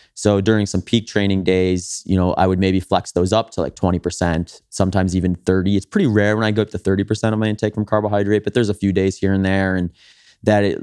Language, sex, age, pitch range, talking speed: English, male, 20-39, 90-105 Hz, 245 wpm